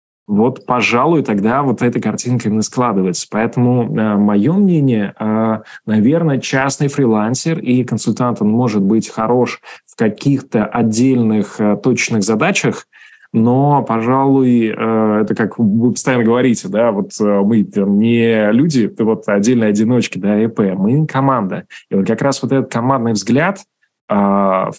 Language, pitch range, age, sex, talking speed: Russian, 105-125 Hz, 20-39, male, 130 wpm